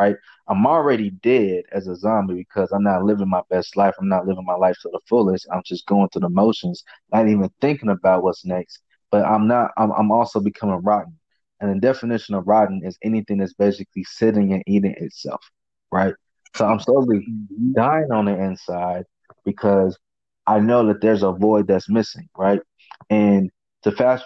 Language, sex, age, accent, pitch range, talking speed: English, male, 20-39, American, 95-110 Hz, 190 wpm